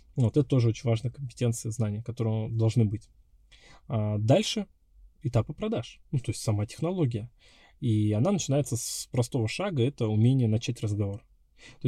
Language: Russian